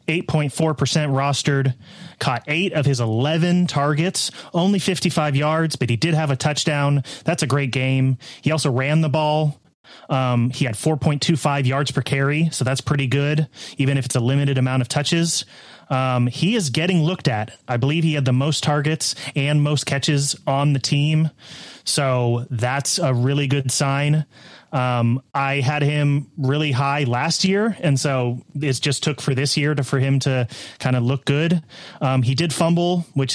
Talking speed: 175 wpm